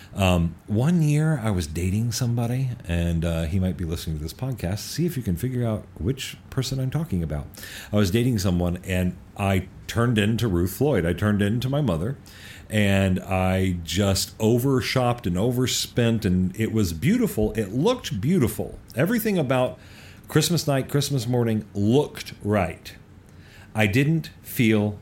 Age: 40-59